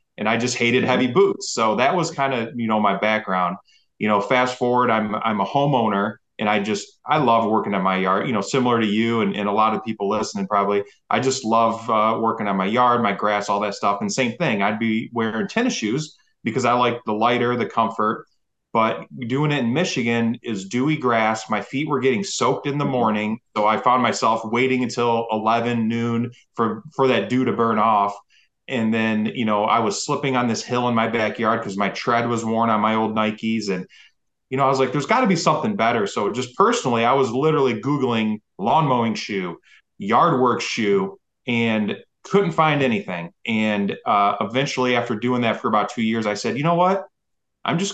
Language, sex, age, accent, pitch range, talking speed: English, male, 20-39, American, 110-130 Hz, 215 wpm